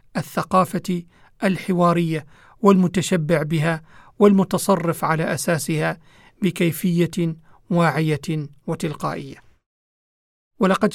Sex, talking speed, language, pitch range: male, 60 wpm, Arabic, 165-195 Hz